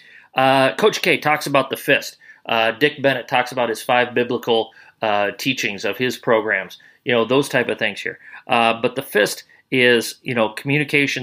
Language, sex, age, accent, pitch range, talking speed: English, male, 40-59, American, 115-140 Hz, 185 wpm